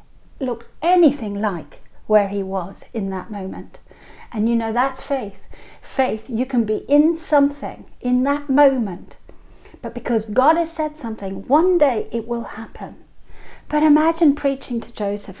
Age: 40-59